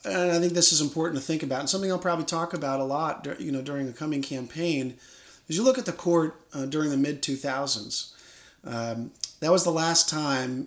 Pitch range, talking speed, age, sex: 130-160 Hz, 225 wpm, 40-59, male